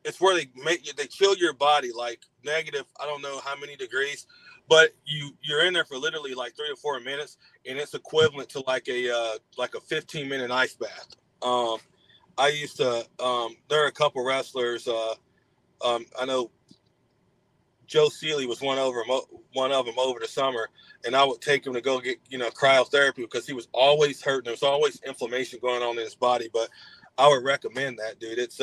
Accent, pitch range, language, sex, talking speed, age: American, 120-145 Hz, English, male, 210 wpm, 30-49